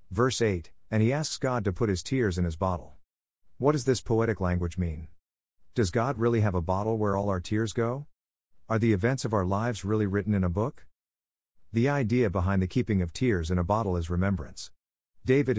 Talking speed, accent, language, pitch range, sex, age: 210 wpm, American, English, 90-115 Hz, male, 50-69